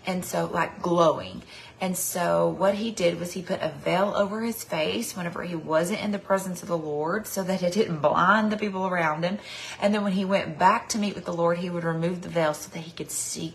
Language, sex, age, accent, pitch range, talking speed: English, female, 30-49, American, 170-210 Hz, 250 wpm